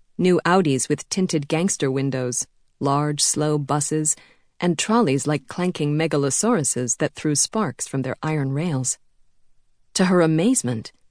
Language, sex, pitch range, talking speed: English, female, 145-180 Hz, 130 wpm